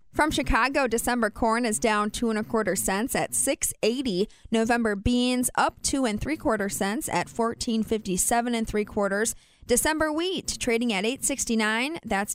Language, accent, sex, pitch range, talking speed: English, American, female, 210-250 Hz, 155 wpm